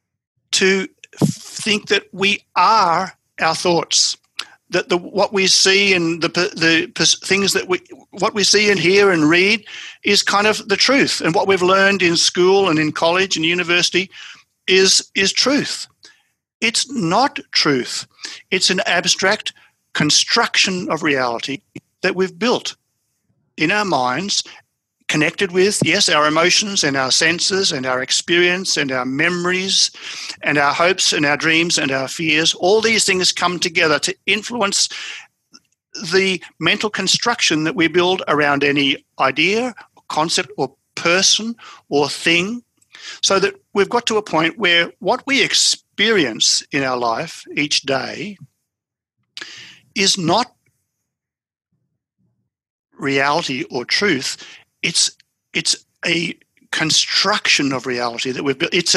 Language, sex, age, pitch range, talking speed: English, male, 50-69, 155-195 Hz, 135 wpm